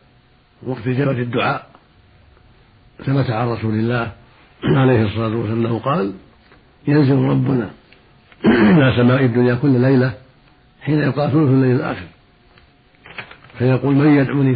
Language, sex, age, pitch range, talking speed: Arabic, male, 60-79, 120-135 Hz, 105 wpm